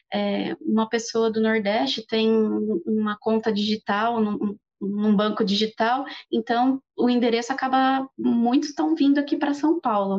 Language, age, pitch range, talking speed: Portuguese, 20-39, 200-240 Hz, 140 wpm